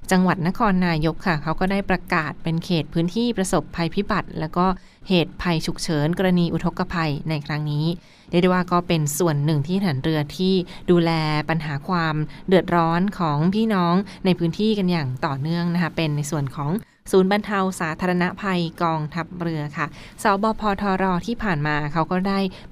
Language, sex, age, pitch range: Thai, female, 20-39, 160-185 Hz